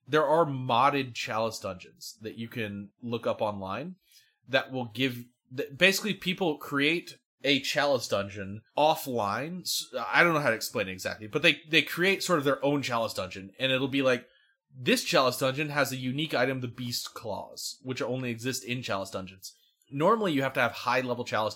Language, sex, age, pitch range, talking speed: English, male, 20-39, 110-140 Hz, 185 wpm